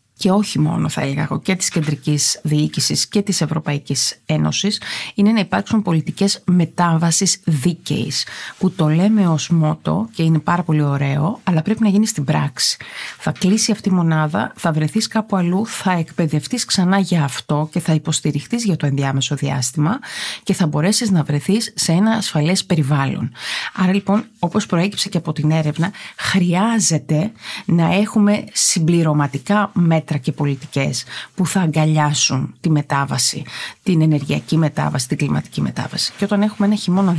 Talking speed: 155 wpm